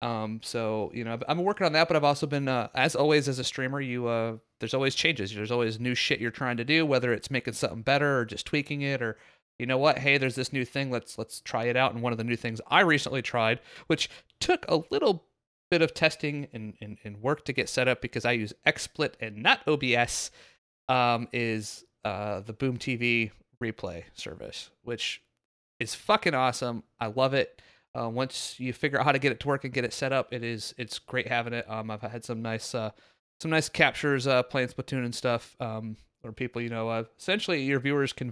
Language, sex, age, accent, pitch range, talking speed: English, male, 30-49, American, 115-135 Hz, 230 wpm